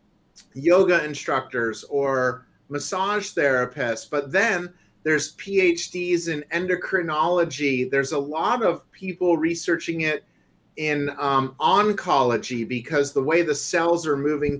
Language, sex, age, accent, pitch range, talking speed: English, male, 30-49, American, 135-170 Hz, 115 wpm